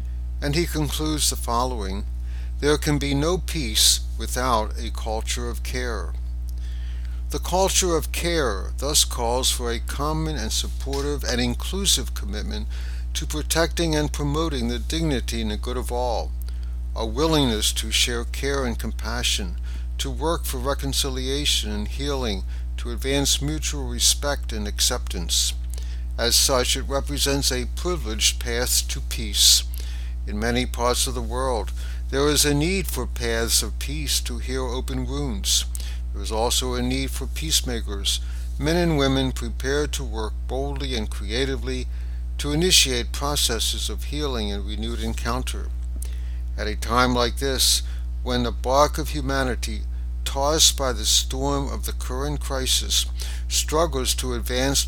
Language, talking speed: English, 145 wpm